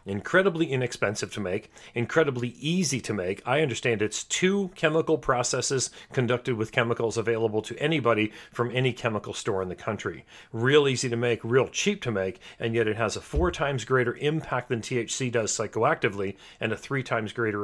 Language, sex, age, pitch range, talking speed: English, male, 40-59, 110-145 Hz, 180 wpm